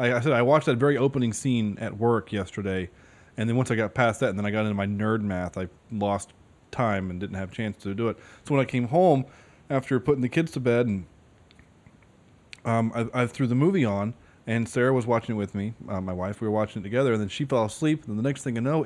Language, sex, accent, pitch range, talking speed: English, male, American, 110-145 Hz, 265 wpm